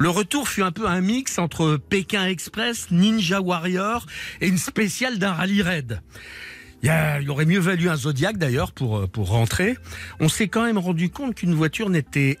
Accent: French